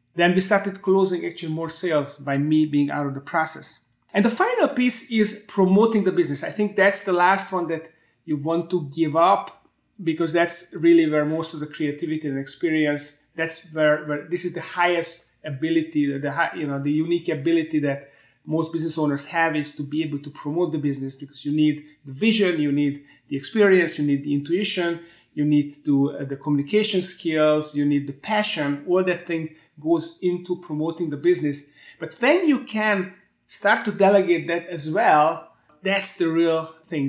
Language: English